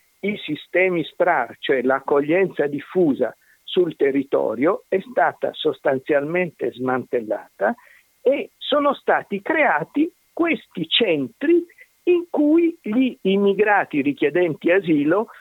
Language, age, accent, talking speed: Italian, 50-69, native, 95 wpm